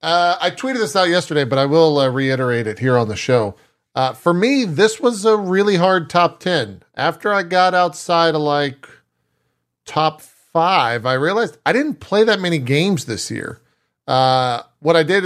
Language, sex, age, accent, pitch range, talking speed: English, male, 40-59, American, 125-175 Hz, 190 wpm